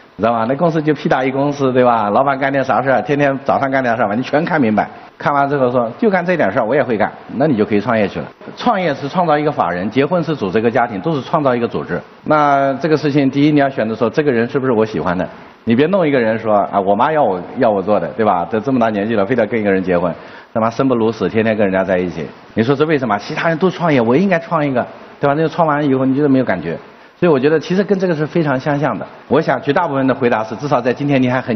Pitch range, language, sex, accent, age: 120-160 Hz, Chinese, male, native, 50-69